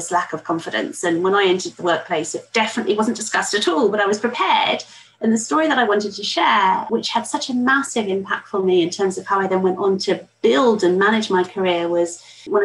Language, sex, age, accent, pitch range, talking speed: English, female, 30-49, British, 185-245 Hz, 245 wpm